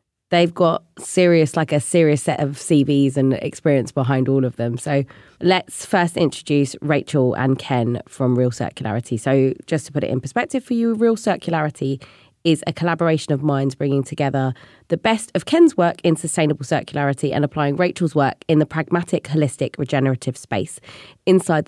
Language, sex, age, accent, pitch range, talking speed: English, female, 20-39, British, 130-165 Hz, 170 wpm